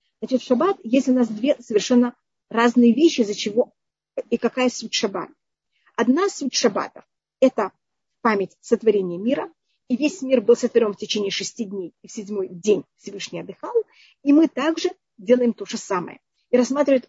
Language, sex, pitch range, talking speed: Russian, female, 225-270 Hz, 160 wpm